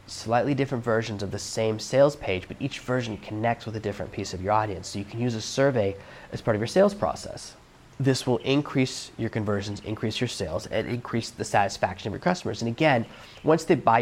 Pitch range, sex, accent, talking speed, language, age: 105-125 Hz, male, American, 220 wpm, English, 20-39